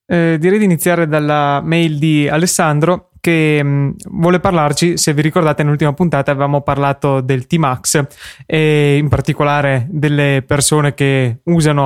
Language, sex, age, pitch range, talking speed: Italian, male, 20-39, 140-160 Hz, 135 wpm